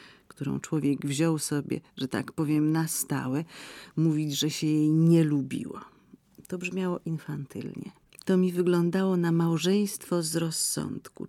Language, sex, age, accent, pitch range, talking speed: Polish, female, 40-59, native, 150-175 Hz, 135 wpm